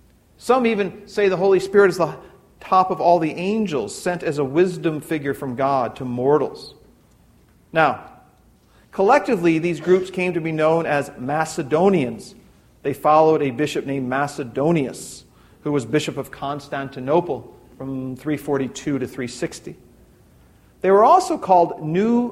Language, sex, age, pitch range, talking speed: English, male, 40-59, 135-180 Hz, 140 wpm